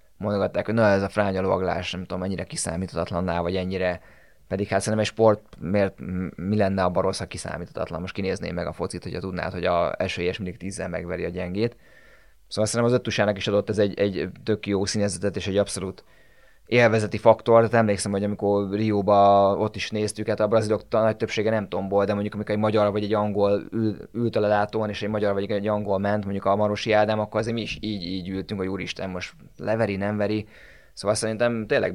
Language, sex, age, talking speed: Hungarian, male, 20-39, 210 wpm